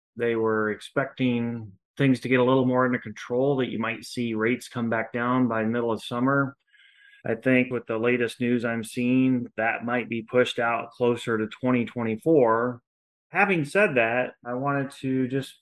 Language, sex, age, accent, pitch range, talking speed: English, male, 30-49, American, 110-125 Hz, 180 wpm